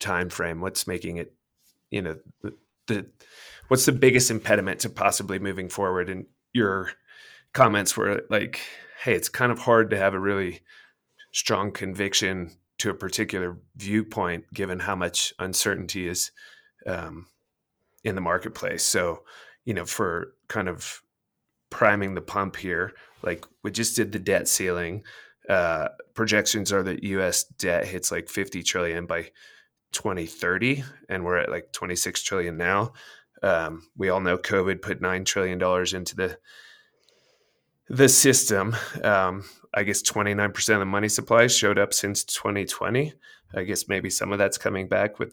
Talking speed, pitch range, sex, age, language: 150 wpm, 95-115 Hz, male, 20-39, English